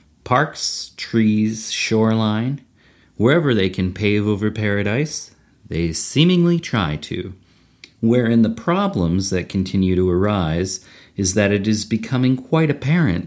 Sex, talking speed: male, 120 wpm